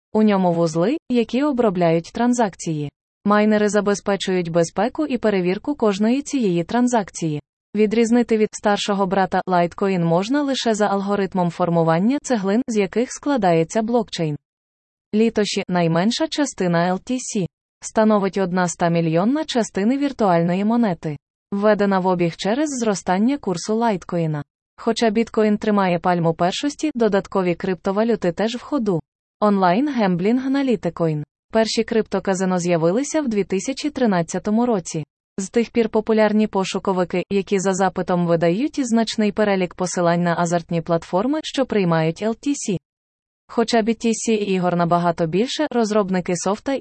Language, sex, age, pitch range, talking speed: Ukrainian, female, 20-39, 175-230 Hz, 120 wpm